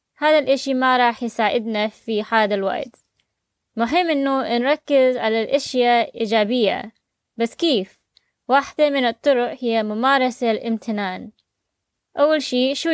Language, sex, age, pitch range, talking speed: Arabic, female, 20-39, 215-265 Hz, 115 wpm